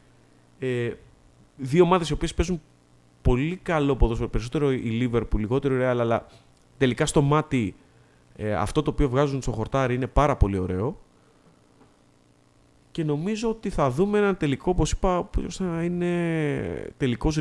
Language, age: Greek, 30-49